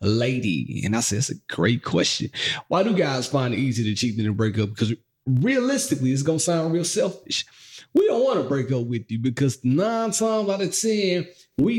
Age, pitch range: 30-49, 140-195 Hz